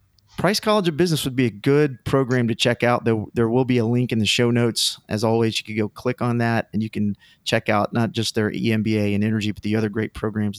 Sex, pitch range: male, 115-135 Hz